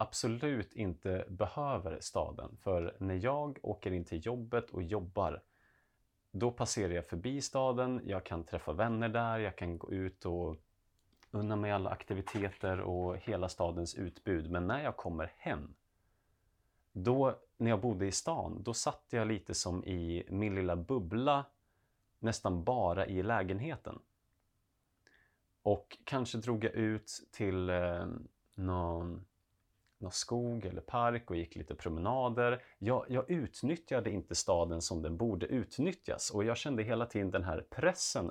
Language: Swedish